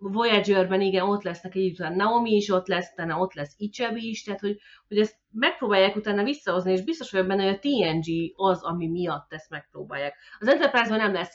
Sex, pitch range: female, 170-215 Hz